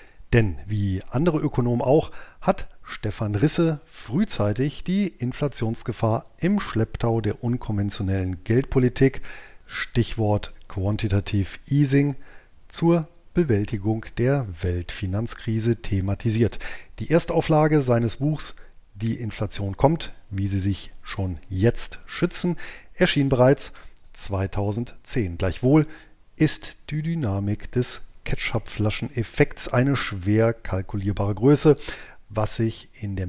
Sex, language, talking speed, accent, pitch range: male, German, 95 wpm, German, 100-135 Hz